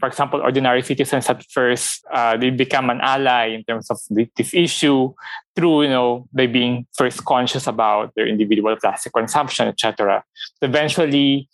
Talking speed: 155 wpm